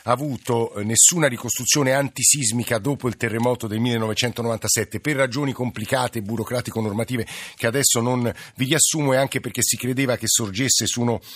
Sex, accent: male, native